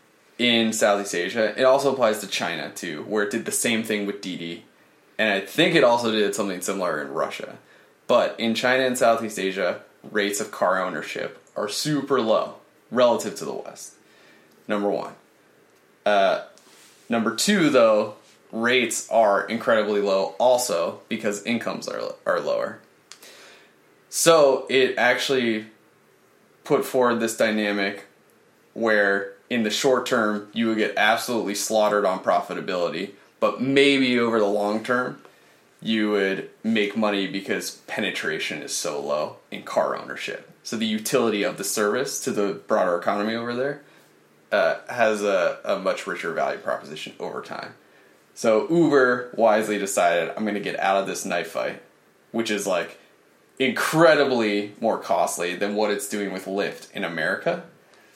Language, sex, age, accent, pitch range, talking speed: English, male, 20-39, American, 105-120 Hz, 150 wpm